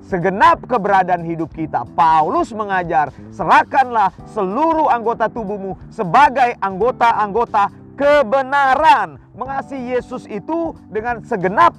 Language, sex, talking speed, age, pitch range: Indonesian, male, 90 wpm, 40-59, 195-260 Hz